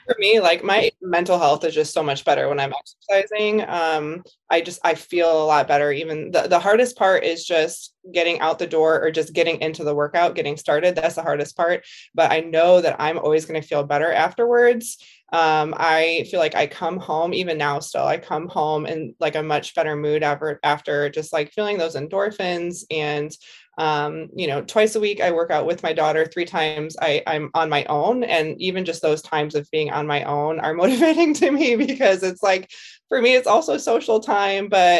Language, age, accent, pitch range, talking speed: English, 20-39, American, 155-230 Hz, 215 wpm